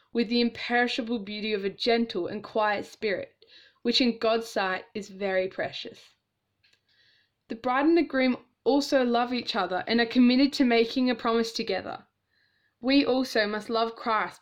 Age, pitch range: 10-29, 215-255 Hz